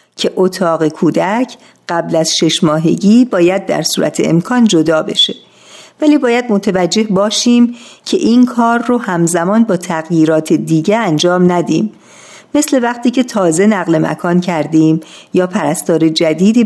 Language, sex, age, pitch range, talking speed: Persian, female, 50-69, 165-220 Hz, 135 wpm